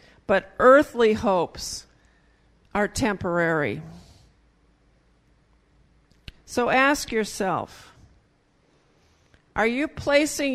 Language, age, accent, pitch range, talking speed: English, 50-69, American, 185-240 Hz, 65 wpm